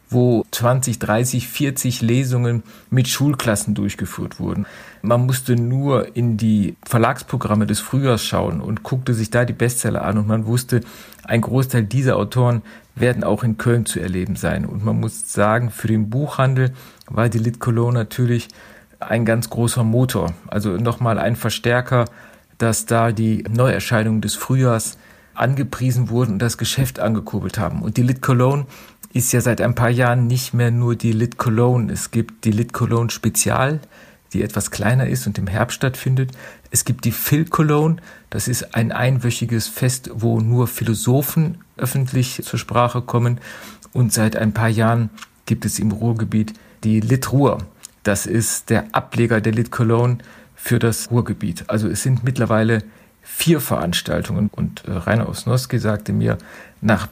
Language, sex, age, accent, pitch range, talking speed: German, male, 50-69, German, 110-125 Hz, 160 wpm